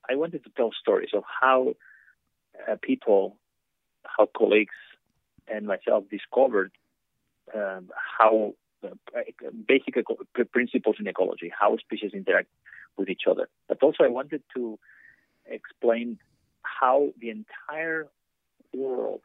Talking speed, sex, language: 120 wpm, male, English